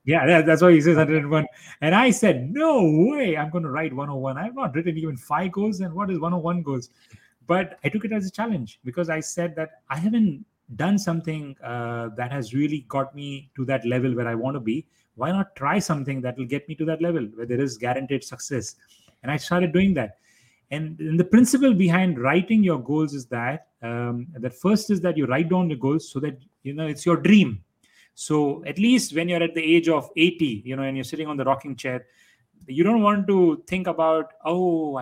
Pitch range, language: 130-175 Hz, English